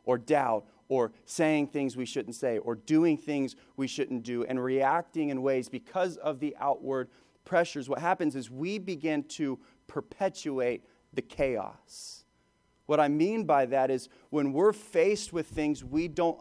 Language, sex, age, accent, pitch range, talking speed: English, male, 30-49, American, 145-205 Hz, 165 wpm